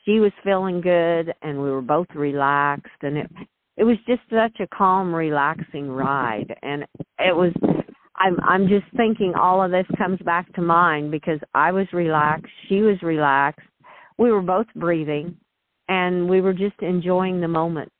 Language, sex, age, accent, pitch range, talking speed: English, female, 50-69, American, 150-185 Hz, 170 wpm